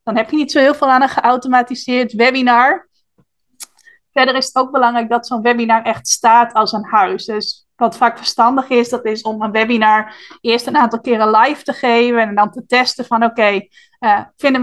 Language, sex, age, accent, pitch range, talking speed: Dutch, female, 20-39, Dutch, 225-265 Hz, 205 wpm